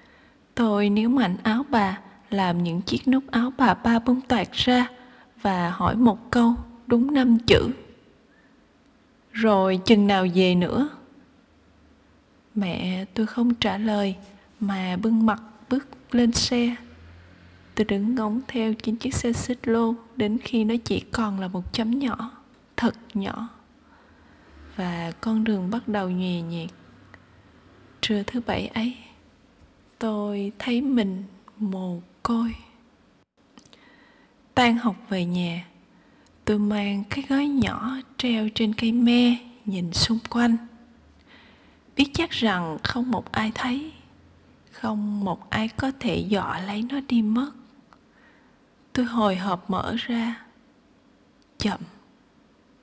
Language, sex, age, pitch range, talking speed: Vietnamese, female, 20-39, 200-245 Hz, 130 wpm